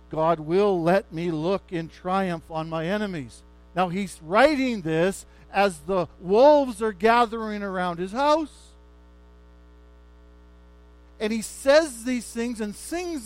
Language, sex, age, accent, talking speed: English, male, 50-69, American, 130 wpm